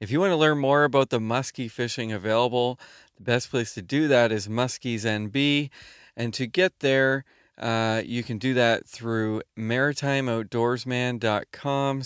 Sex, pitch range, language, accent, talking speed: male, 105-130 Hz, English, American, 155 wpm